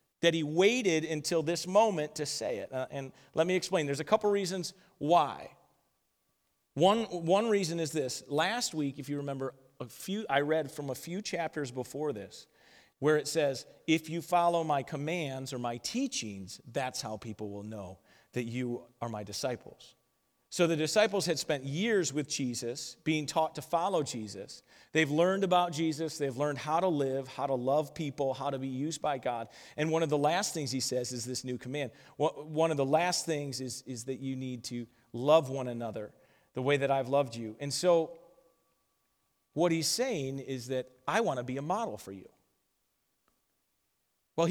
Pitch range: 130-165 Hz